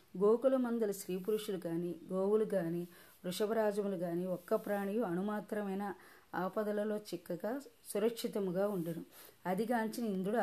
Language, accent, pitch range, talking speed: Telugu, native, 180-215 Hz, 100 wpm